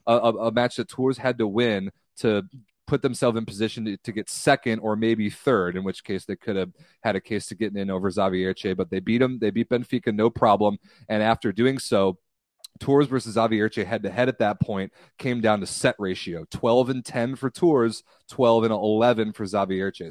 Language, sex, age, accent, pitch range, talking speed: English, male, 30-49, American, 105-130 Hz, 210 wpm